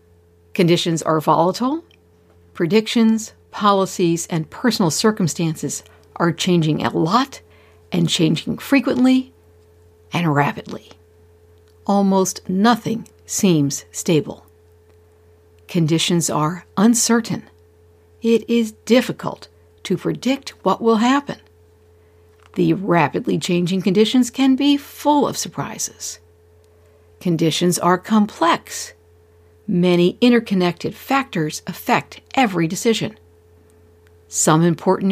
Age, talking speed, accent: 60-79, 90 wpm, American